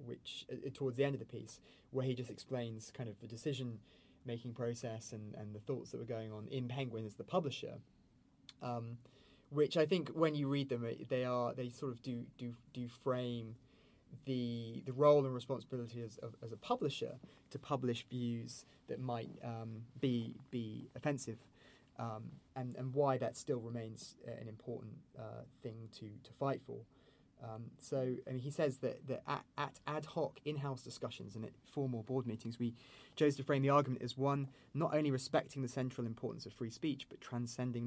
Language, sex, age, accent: English, male, 20-39, British